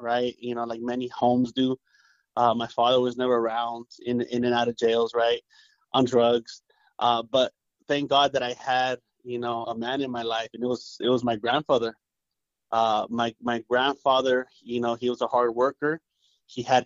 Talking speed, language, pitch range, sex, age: 200 wpm, English, 120-140 Hz, male, 30-49